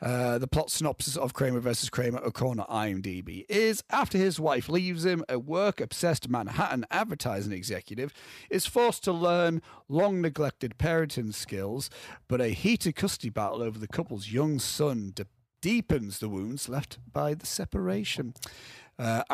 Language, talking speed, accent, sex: English, 145 wpm, British, male